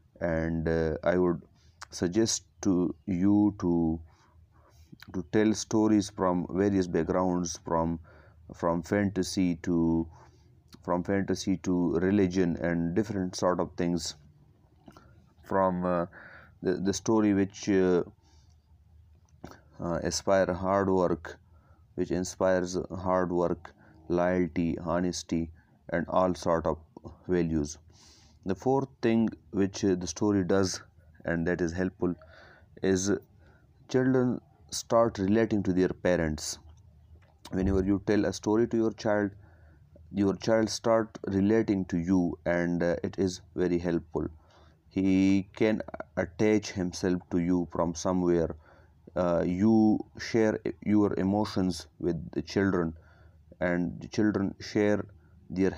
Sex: male